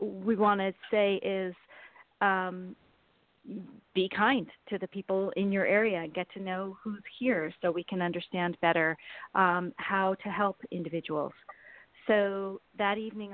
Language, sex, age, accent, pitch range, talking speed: English, female, 40-59, American, 175-215 Hz, 145 wpm